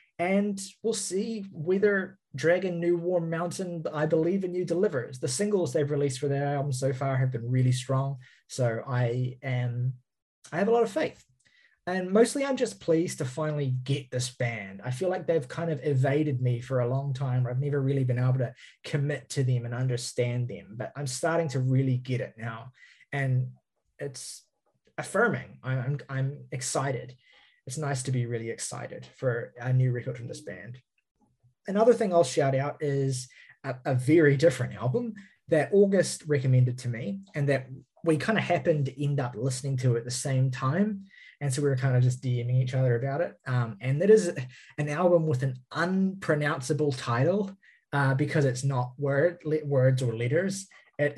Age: 20-39